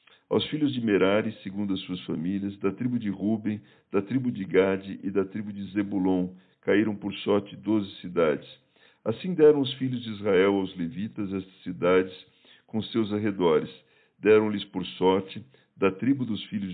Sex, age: male, 50-69